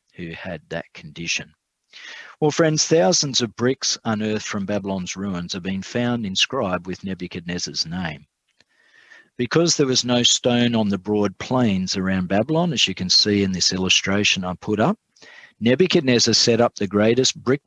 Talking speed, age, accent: 155 wpm, 40-59, Australian